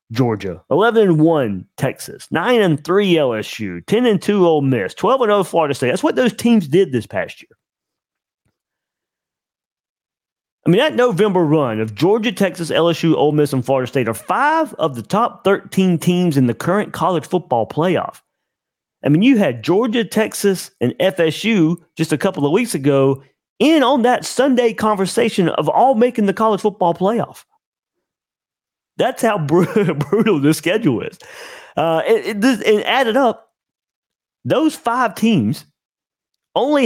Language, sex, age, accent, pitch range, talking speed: English, male, 40-59, American, 150-220 Hz, 145 wpm